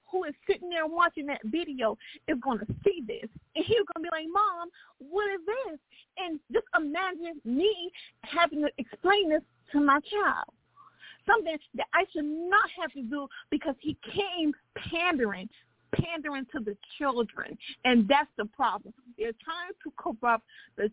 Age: 40-59